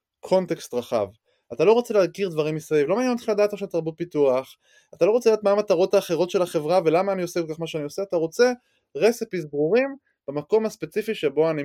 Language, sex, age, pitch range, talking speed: Hebrew, male, 20-39, 150-220 Hz, 210 wpm